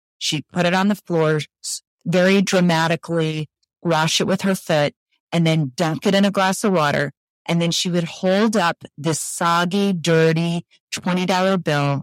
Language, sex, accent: English, female, American